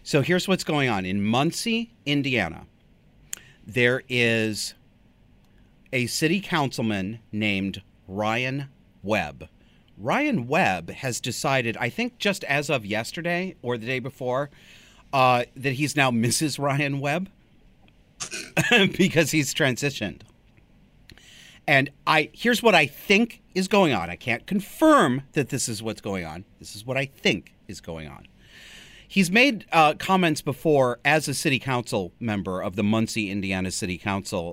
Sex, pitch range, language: male, 105-150 Hz, English